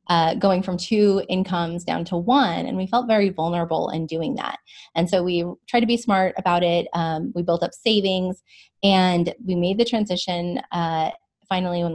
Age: 20-39